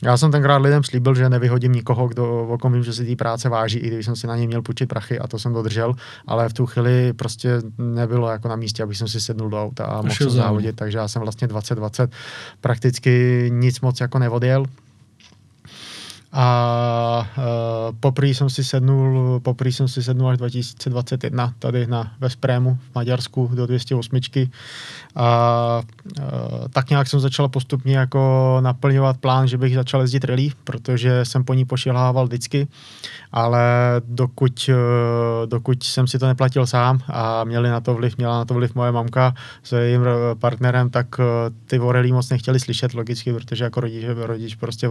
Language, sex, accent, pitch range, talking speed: Czech, male, native, 120-130 Hz, 175 wpm